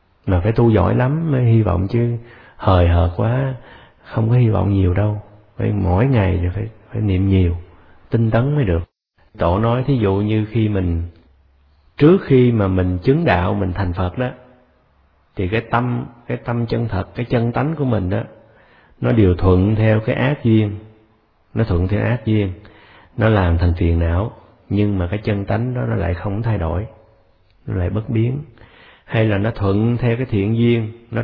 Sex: male